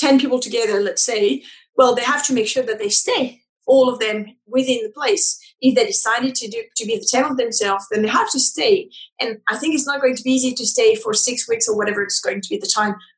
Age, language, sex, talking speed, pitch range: 30-49, English, female, 265 wpm, 215-260 Hz